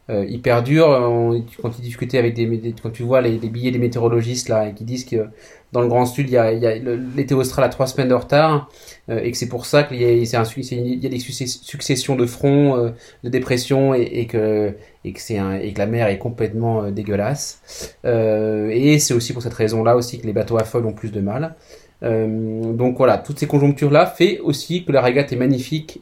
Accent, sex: French, male